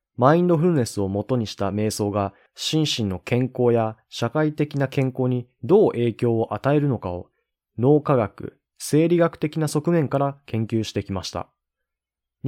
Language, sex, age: Japanese, male, 20-39